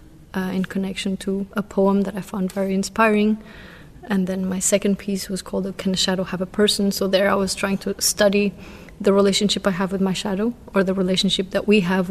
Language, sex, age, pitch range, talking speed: Czech, female, 30-49, 190-205 Hz, 225 wpm